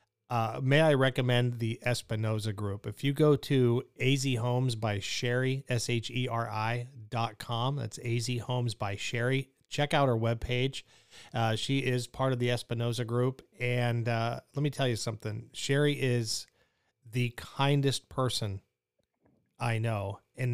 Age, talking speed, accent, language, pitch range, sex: 40-59, 150 wpm, American, English, 110-130 Hz, male